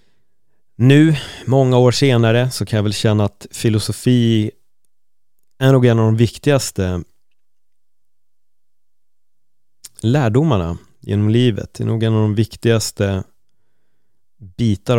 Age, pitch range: 30-49, 100-115 Hz